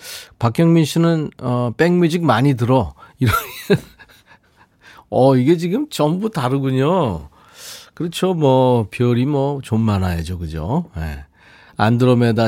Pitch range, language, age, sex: 100-145 Hz, Korean, 40-59, male